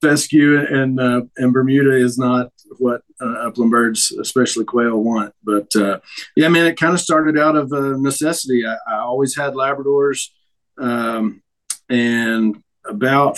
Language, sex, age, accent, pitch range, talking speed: English, male, 40-59, American, 120-140 Hz, 155 wpm